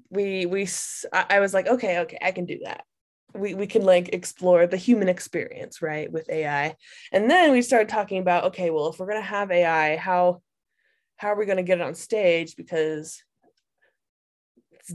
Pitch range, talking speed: 165-235 Hz, 185 wpm